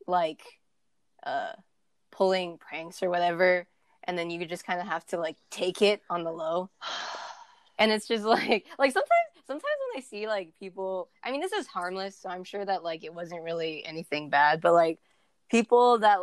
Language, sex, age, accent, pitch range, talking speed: English, female, 20-39, American, 170-210 Hz, 190 wpm